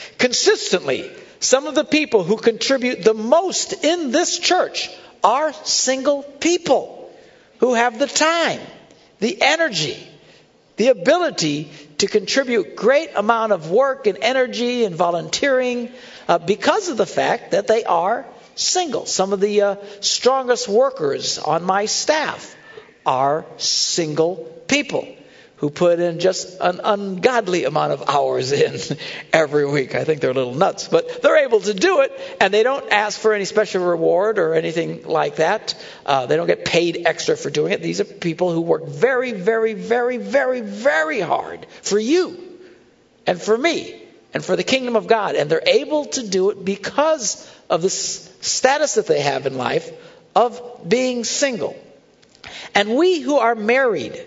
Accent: American